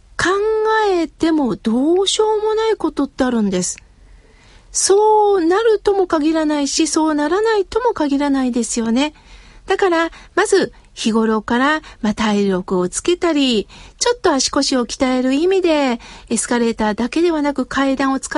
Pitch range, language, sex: 245-360 Hz, Japanese, female